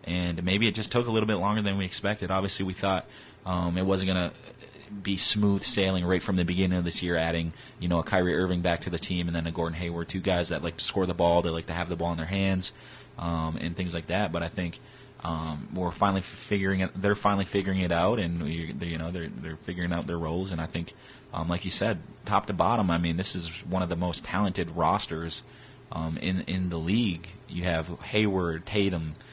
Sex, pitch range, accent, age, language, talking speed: male, 85-100 Hz, American, 30-49, English, 245 wpm